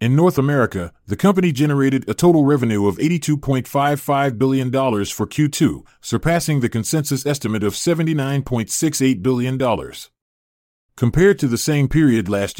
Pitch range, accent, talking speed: 105-145 Hz, American, 130 wpm